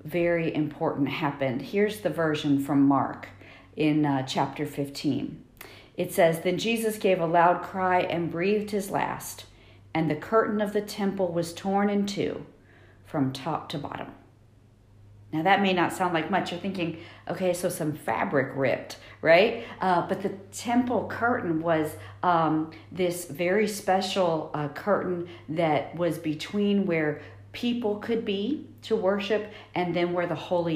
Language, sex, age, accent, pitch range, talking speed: English, female, 50-69, American, 140-180 Hz, 155 wpm